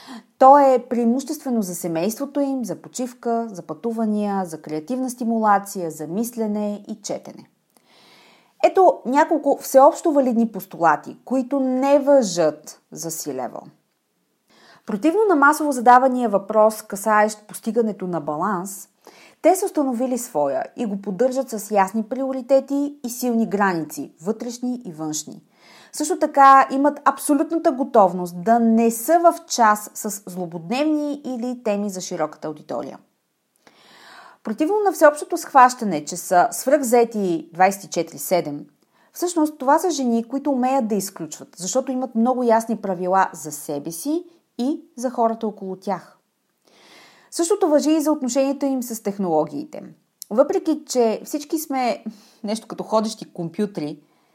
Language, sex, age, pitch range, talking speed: Bulgarian, female, 30-49, 195-275 Hz, 125 wpm